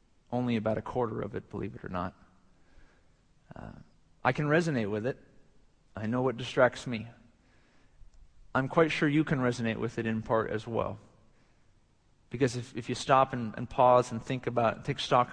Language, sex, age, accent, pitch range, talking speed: English, male, 40-59, American, 110-135 Hz, 180 wpm